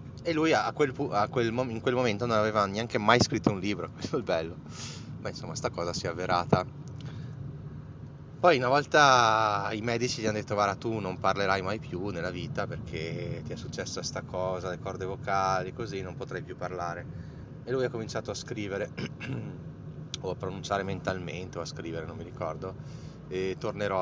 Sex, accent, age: male, native, 20-39